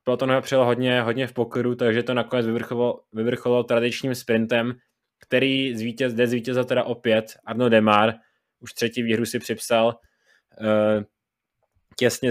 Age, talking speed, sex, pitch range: 20-39, 125 wpm, male, 110-120 Hz